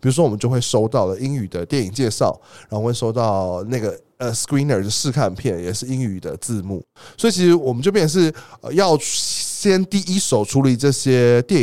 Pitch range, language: 105-150 Hz, Chinese